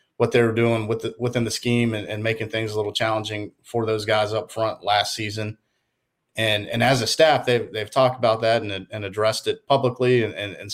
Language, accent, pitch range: English, American, 105-125 Hz